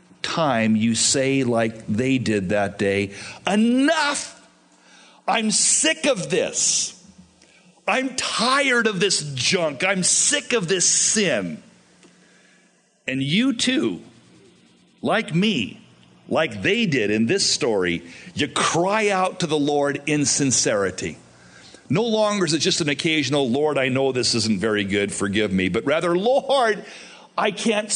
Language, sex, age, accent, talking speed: English, male, 50-69, American, 135 wpm